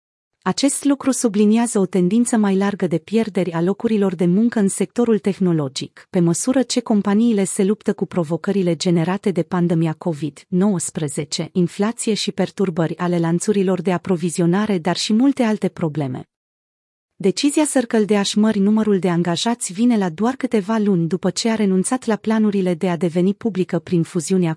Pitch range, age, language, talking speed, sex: 175-220 Hz, 30-49, Romanian, 155 wpm, female